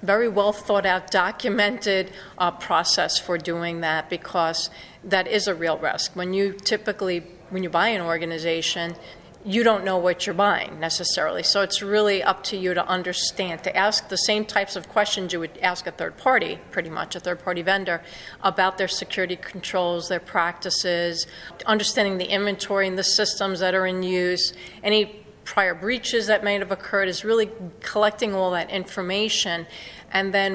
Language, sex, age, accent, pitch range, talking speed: English, female, 40-59, American, 175-200 Hz, 175 wpm